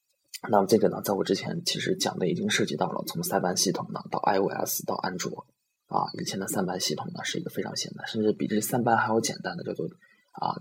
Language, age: Chinese, 20-39